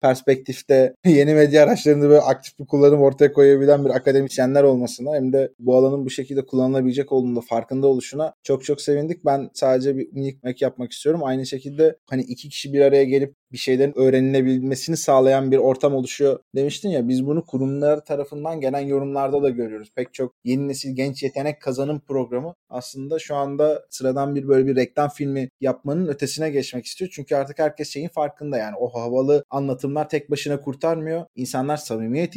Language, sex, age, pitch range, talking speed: Turkish, male, 20-39, 135-165 Hz, 170 wpm